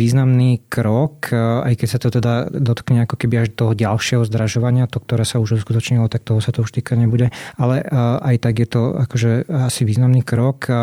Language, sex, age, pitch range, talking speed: Slovak, male, 20-39, 115-125 Hz, 190 wpm